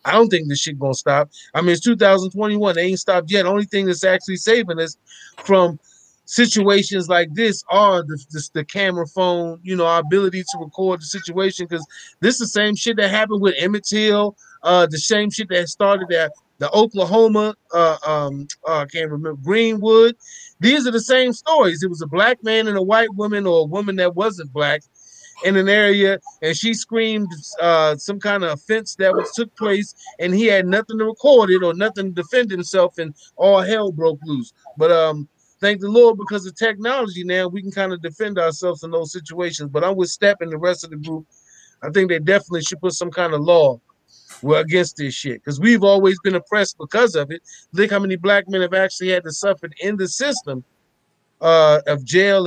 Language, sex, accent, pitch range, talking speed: English, male, American, 165-210 Hz, 210 wpm